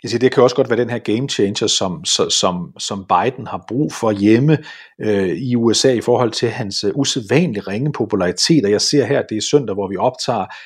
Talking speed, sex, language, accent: 220 wpm, male, Danish, native